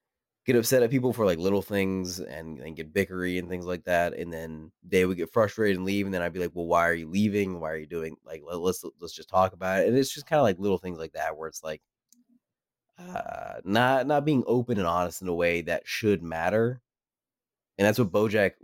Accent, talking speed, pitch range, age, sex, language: American, 240 wpm, 85-105 Hz, 20-39, male, English